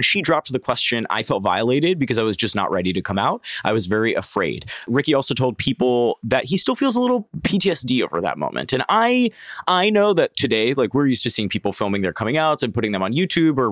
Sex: male